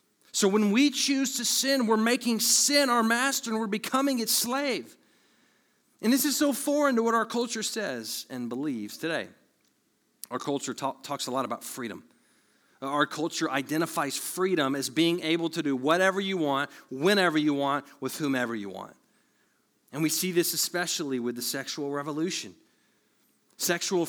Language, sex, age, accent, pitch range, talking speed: English, male, 40-59, American, 140-230 Hz, 165 wpm